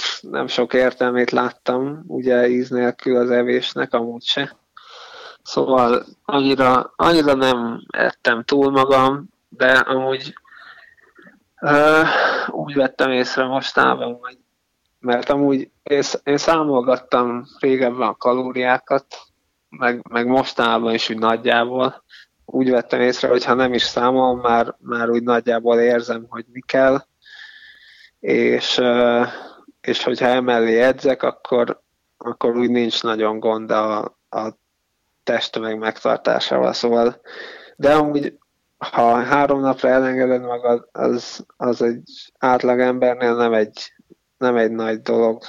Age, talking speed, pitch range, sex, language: 20-39, 115 wpm, 120-135 Hz, male, Hungarian